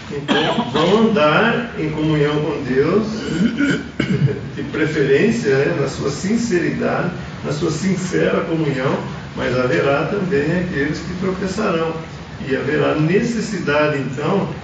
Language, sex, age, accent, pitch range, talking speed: English, male, 40-59, Brazilian, 145-205 Hz, 110 wpm